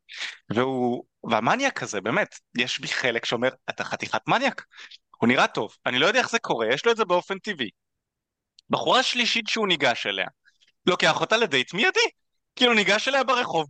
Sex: male